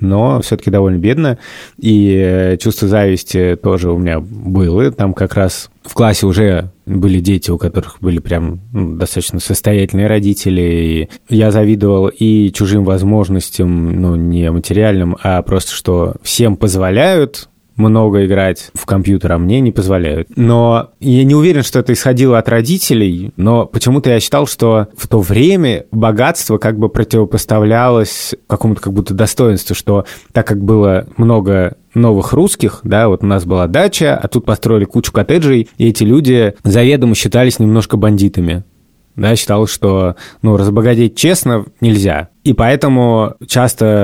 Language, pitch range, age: Russian, 95-115 Hz, 20-39